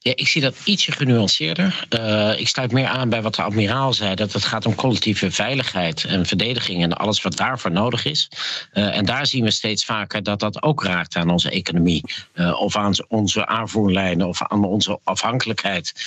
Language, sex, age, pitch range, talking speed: Dutch, male, 50-69, 100-135 Hz, 200 wpm